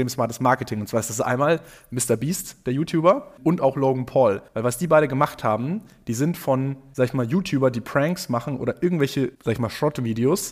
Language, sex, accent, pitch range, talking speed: German, male, German, 125-160 Hz, 215 wpm